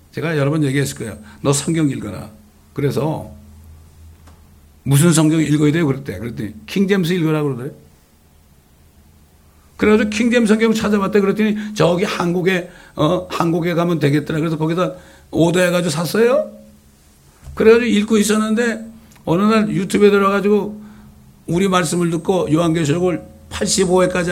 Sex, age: male, 60-79